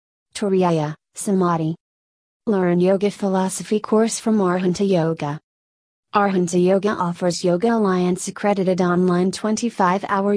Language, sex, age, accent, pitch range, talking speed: English, female, 30-49, American, 170-200 Hz, 100 wpm